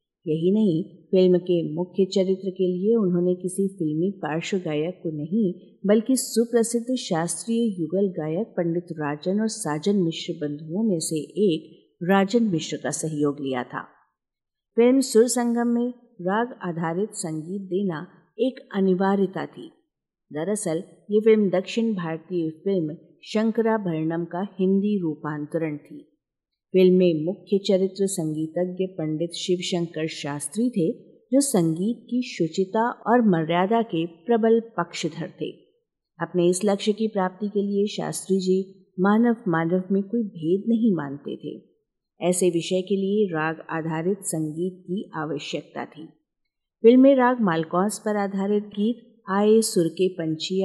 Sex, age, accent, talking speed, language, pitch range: female, 50-69, native, 135 wpm, Hindi, 165-210 Hz